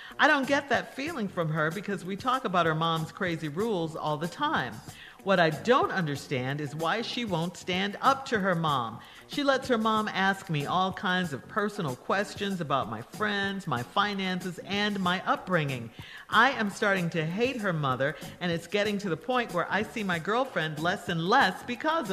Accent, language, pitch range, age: American, English, 155-220 Hz, 50-69